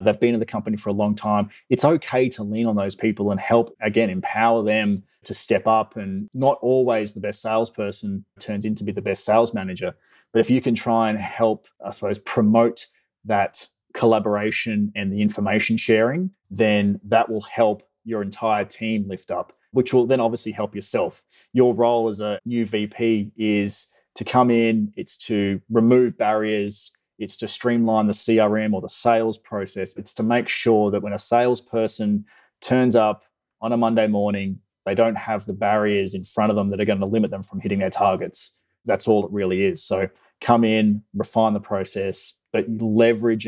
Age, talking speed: 20-39, 190 wpm